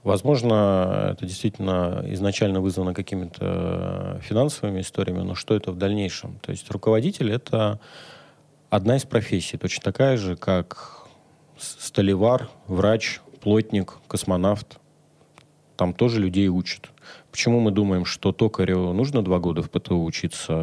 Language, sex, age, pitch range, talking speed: Russian, male, 30-49, 90-115 Hz, 130 wpm